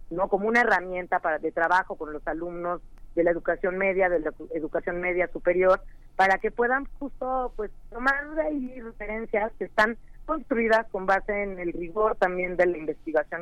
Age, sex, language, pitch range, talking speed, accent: 40-59, female, Spanish, 175-215 Hz, 190 wpm, Mexican